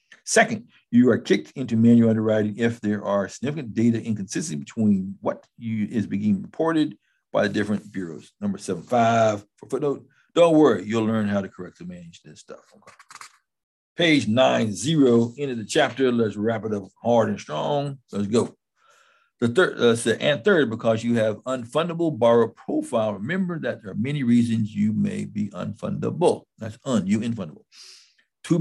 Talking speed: 170 wpm